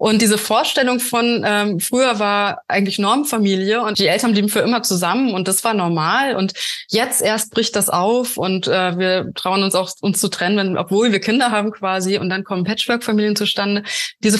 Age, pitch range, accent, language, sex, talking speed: 20-39, 190-230 Hz, German, German, female, 195 wpm